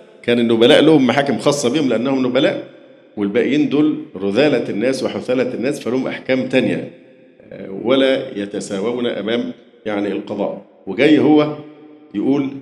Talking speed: 120 wpm